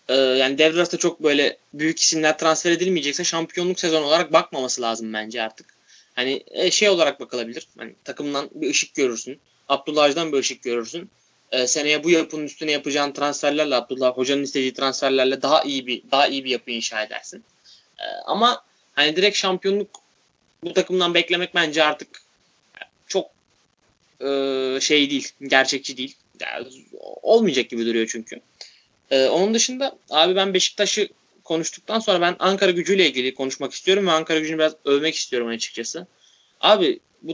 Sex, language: male, Turkish